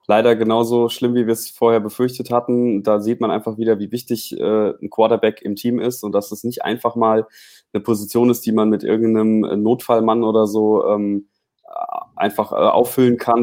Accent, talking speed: German, 180 wpm